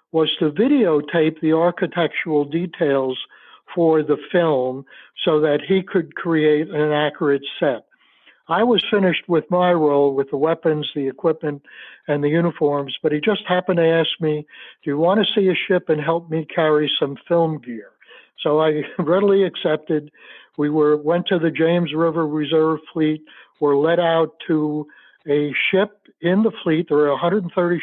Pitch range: 150-190 Hz